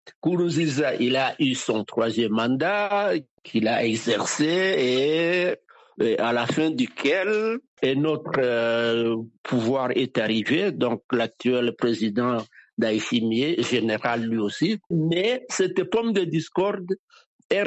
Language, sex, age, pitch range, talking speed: French, male, 60-79, 135-190 Hz, 115 wpm